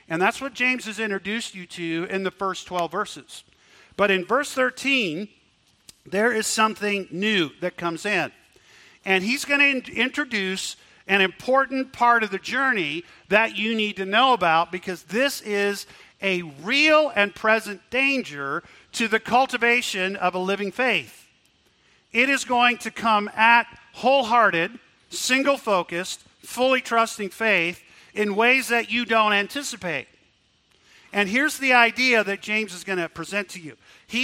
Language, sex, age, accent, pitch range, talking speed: English, male, 50-69, American, 190-255 Hz, 150 wpm